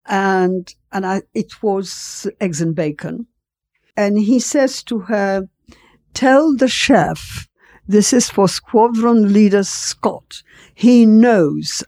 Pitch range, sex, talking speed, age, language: 180-255 Hz, female, 115 wpm, 60-79, English